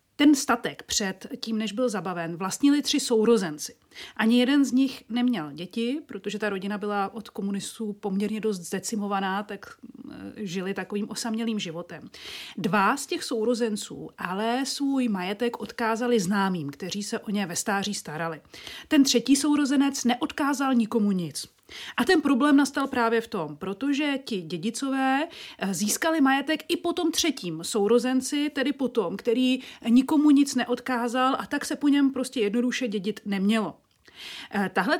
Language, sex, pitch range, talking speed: Czech, female, 215-265 Hz, 145 wpm